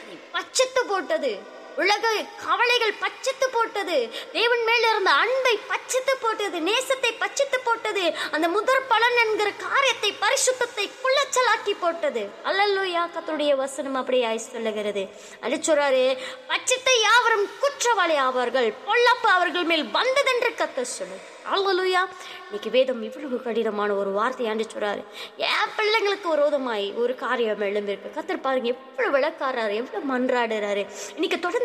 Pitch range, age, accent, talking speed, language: 260-435 Hz, 20-39, native, 65 wpm, Tamil